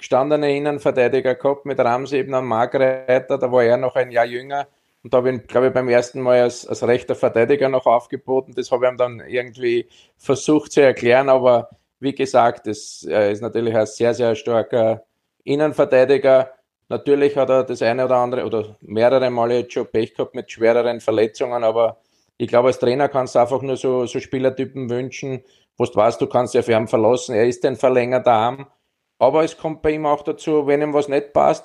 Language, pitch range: German, 115-135 Hz